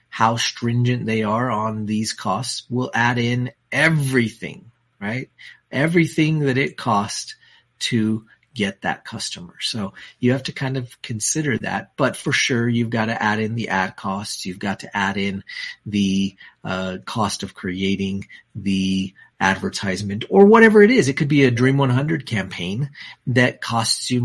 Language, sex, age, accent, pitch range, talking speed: English, male, 40-59, American, 105-130 Hz, 160 wpm